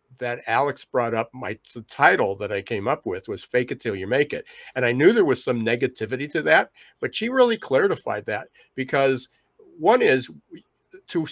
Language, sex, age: English, male, 50-69